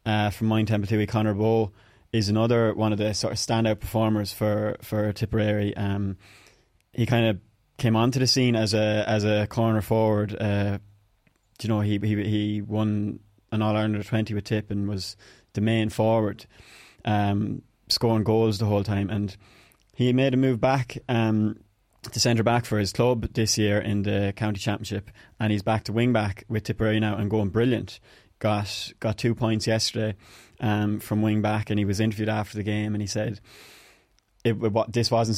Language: English